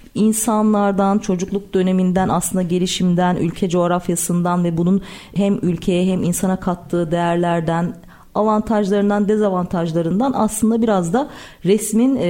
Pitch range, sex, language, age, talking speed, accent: 175-225 Hz, female, Turkish, 40-59, 105 wpm, native